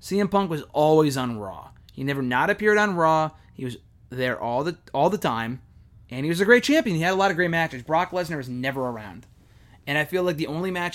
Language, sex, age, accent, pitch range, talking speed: English, male, 20-39, American, 125-170 Hz, 245 wpm